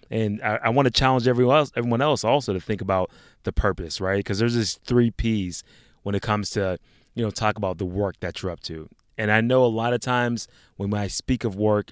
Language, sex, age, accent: English, male, 20-39, American